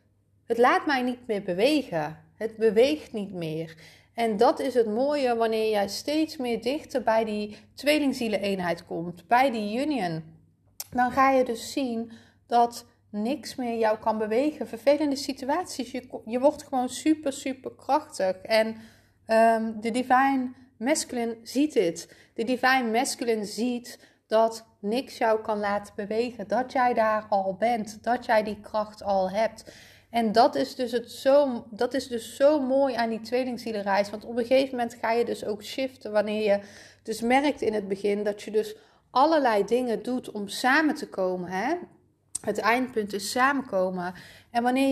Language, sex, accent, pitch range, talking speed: Dutch, female, Dutch, 215-255 Hz, 165 wpm